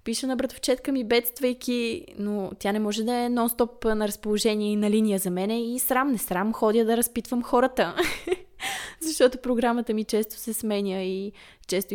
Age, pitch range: 20-39, 195-245 Hz